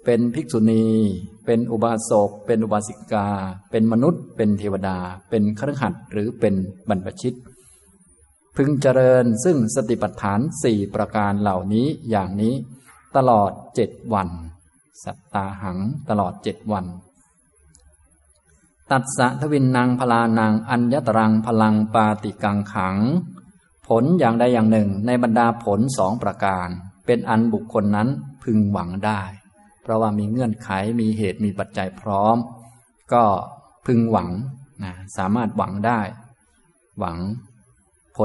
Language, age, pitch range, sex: Thai, 20-39, 100-120 Hz, male